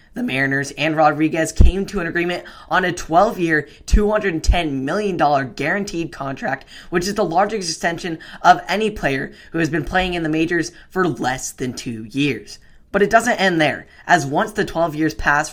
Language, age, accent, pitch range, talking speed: English, 10-29, American, 135-175 Hz, 180 wpm